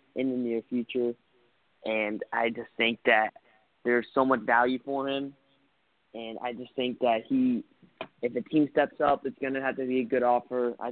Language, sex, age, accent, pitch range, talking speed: English, male, 20-39, American, 120-140 Hz, 200 wpm